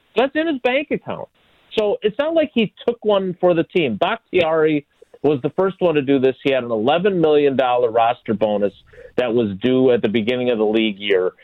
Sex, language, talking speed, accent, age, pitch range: male, English, 210 wpm, American, 40-59, 130-190 Hz